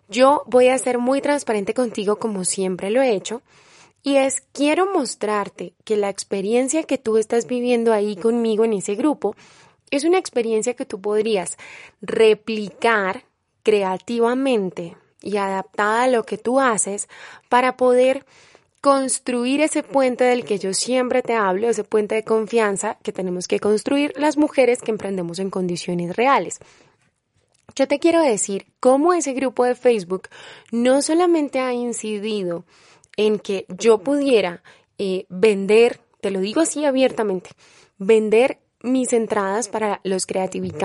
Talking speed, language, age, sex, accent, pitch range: 145 wpm, Spanish, 10-29, female, Colombian, 205-265 Hz